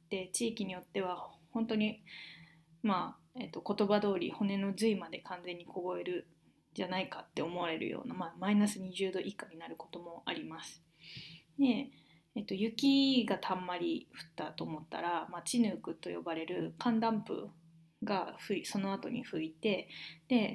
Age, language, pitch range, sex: 20-39, Japanese, 170-220 Hz, female